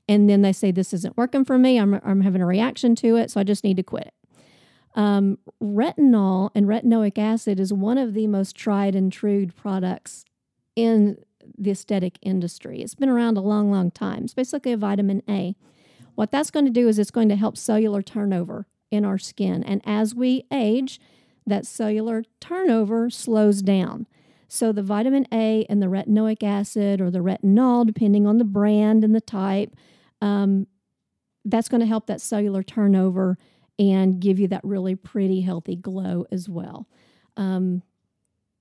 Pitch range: 195-225 Hz